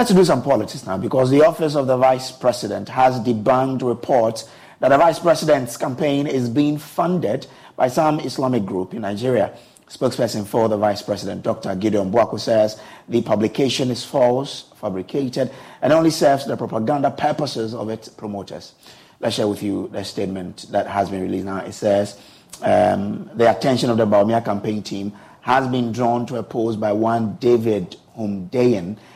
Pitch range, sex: 105-130 Hz, male